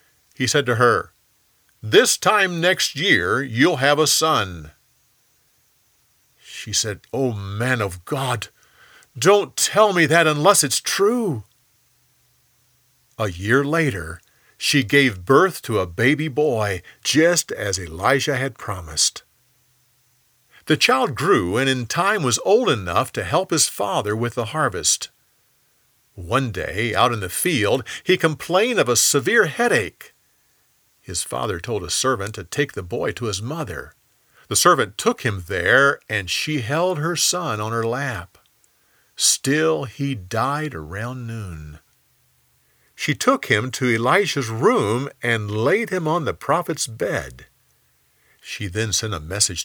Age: 50-69